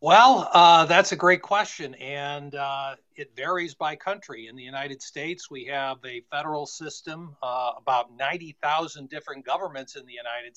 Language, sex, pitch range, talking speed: English, male, 135-165 Hz, 165 wpm